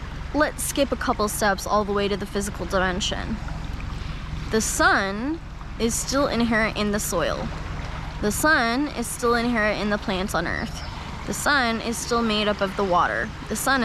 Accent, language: American, English